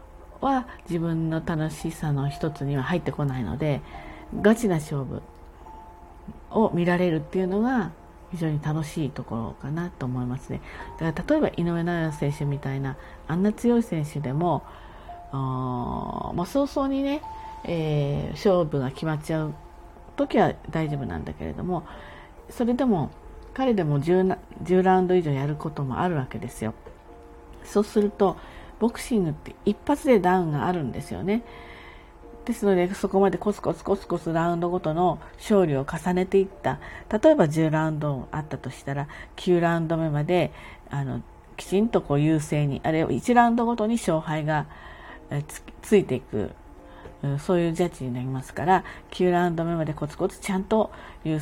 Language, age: Japanese, 40-59